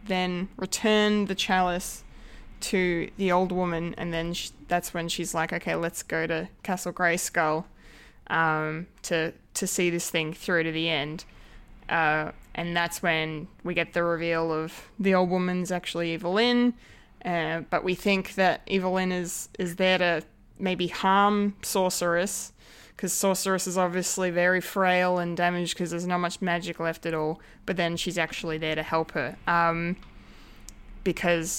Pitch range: 165-190 Hz